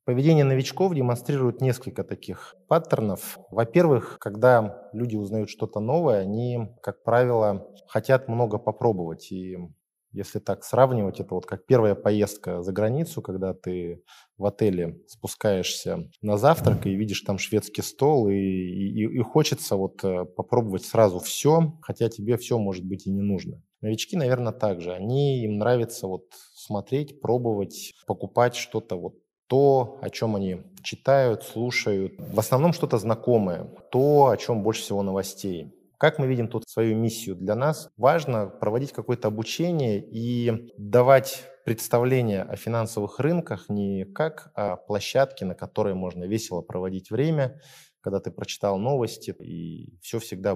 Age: 20-39